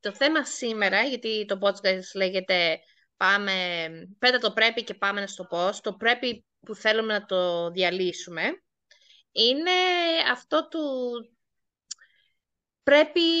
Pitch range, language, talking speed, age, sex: 190-260 Hz, Greek, 120 wpm, 20-39, female